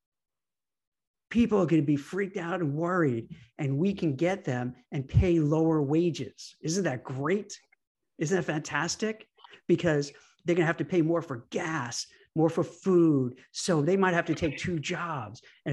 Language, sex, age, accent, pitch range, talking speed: English, male, 50-69, American, 150-195 Hz, 170 wpm